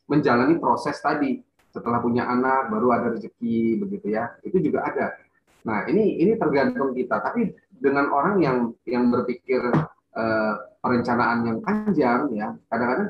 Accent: native